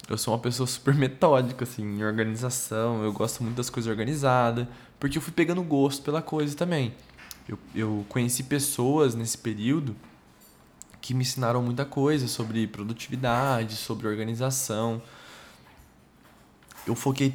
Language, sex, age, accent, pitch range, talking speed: Portuguese, male, 20-39, Brazilian, 110-130 Hz, 140 wpm